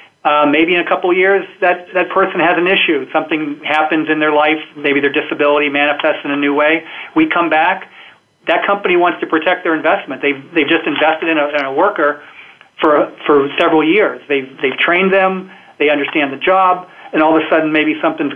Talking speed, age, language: 210 wpm, 40-59, English